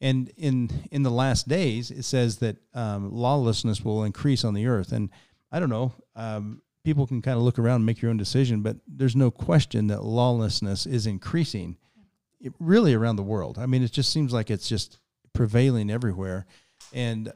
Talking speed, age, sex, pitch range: 195 wpm, 40-59, male, 110-130 Hz